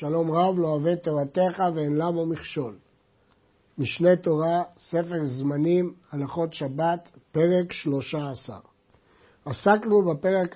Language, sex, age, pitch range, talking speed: Hebrew, male, 60-79, 150-200 Hz, 100 wpm